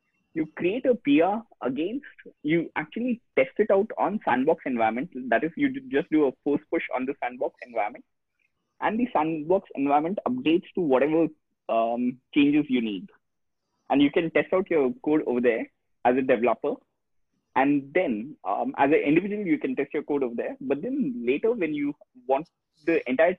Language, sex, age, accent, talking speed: English, male, 20-39, Indian, 175 wpm